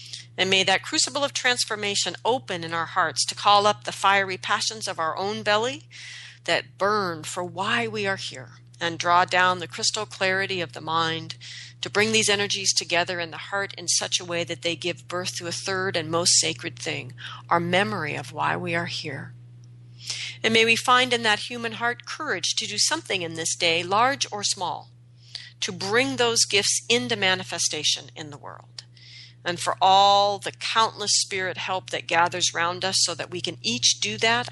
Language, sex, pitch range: English, female, 125-200 Hz